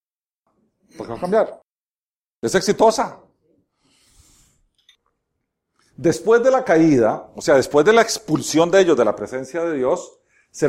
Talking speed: 135 wpm